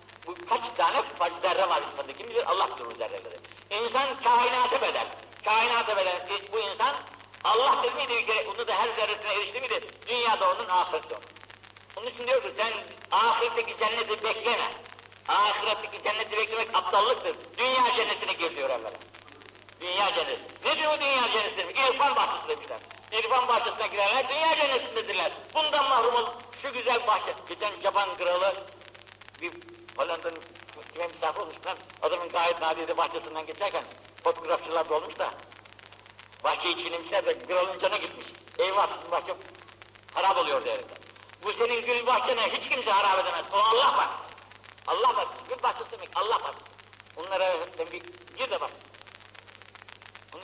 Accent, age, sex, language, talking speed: native, 60-79, male, Turkish, 140 wpm